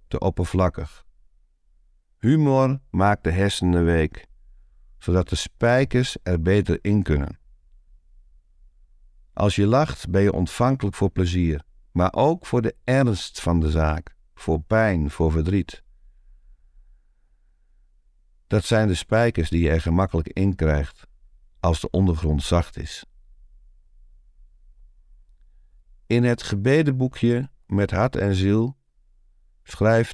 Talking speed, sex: 115 wpm, male